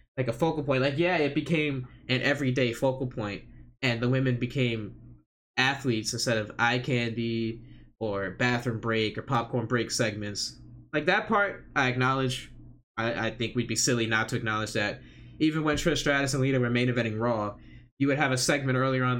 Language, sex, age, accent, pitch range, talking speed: English, male, 10-29, American, 110-135 Hz, 190 wpm